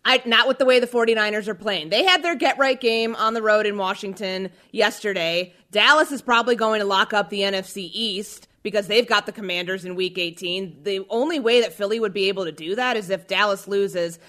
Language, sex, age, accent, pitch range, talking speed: English, female, 30-49, American, 200-260 Hz, 225 wpm